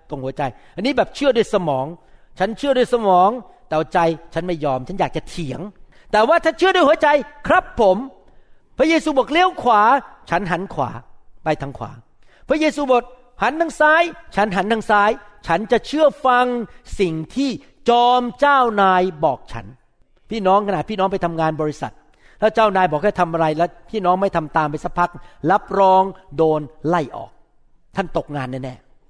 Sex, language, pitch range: male, Thai, 165-250 Hz